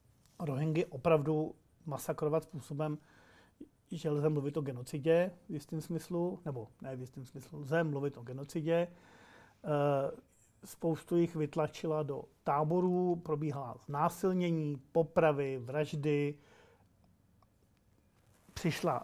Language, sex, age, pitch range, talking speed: Czech, male, 40-59, 140-165 Hz, 90 wpm